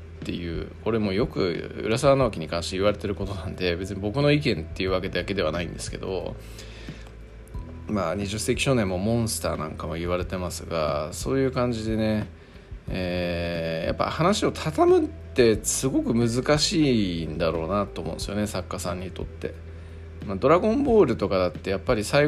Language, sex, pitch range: Japanese, male, 85-115 Hz